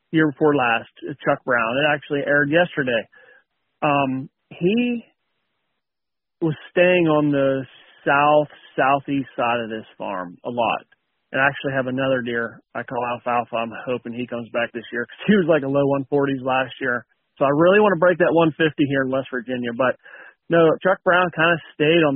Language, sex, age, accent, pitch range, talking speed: English, male, 40-59, American, 125-155 Hz, 185 wpm